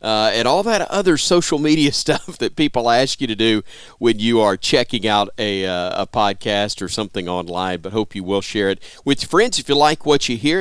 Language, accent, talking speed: English, American, 230 wpm